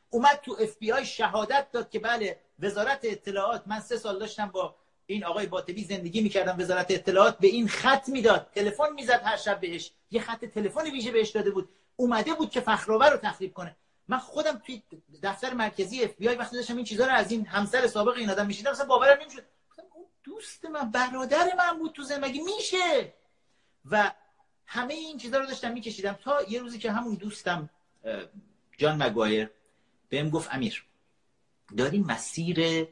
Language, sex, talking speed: Persian, male, 180 wpm